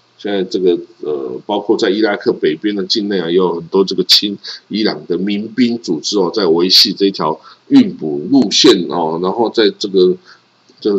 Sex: male